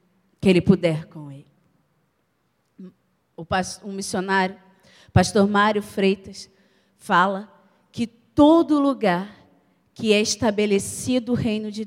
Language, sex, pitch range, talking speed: Portuguese, female, 155-190 Hz, 100 wpm